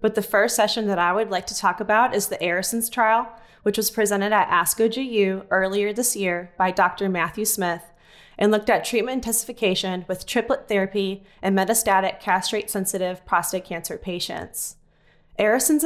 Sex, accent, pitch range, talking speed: female, American, 185-215 Hz, 165 wpm